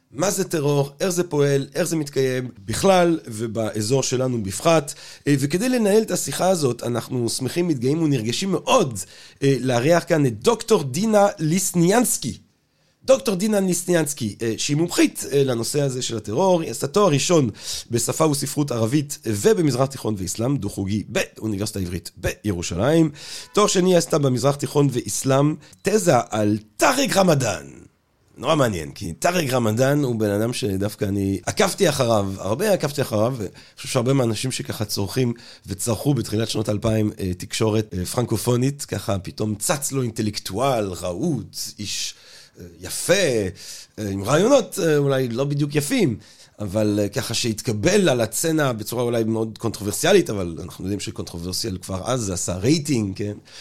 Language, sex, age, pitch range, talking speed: Hebrew, male, 30-49, 105-155 Hz, 135 wpm